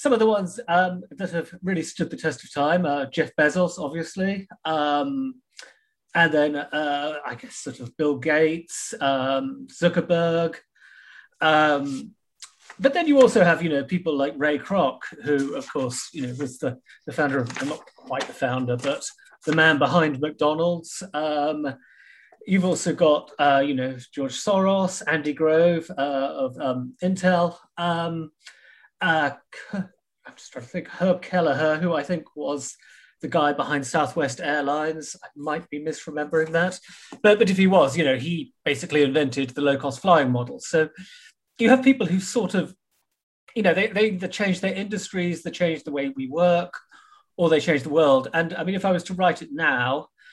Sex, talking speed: male, 175 wpm